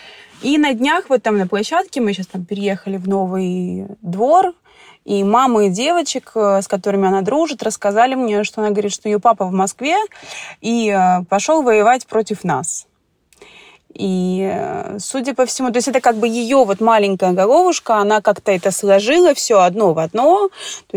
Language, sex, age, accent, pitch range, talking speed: Russian, female, 20-39, native, 205-280 Hz, 170 wpm